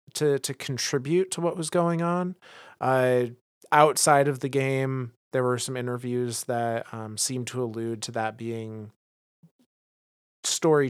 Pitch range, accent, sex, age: 115-135 Hz, American, male, 30-49